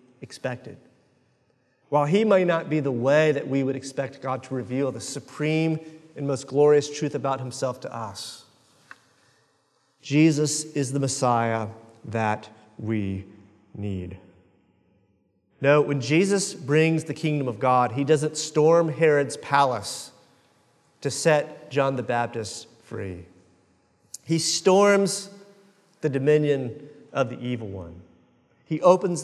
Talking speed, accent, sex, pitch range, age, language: 125 wpm, American, male, 120-155 Hz, 40-59, English